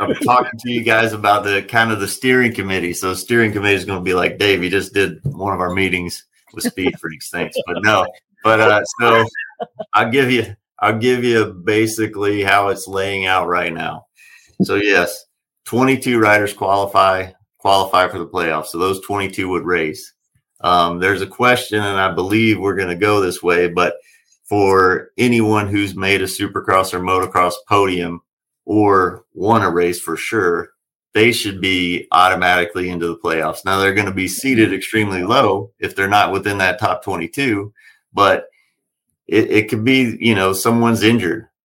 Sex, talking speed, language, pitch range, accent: male, 180 wpm, English, 95-110 Hz, American